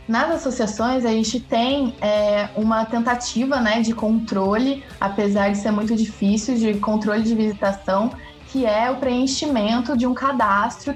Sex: female